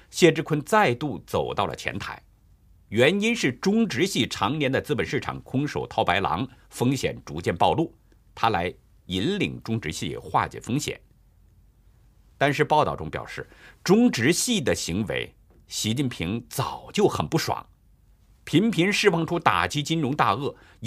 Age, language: 50-69, Chinese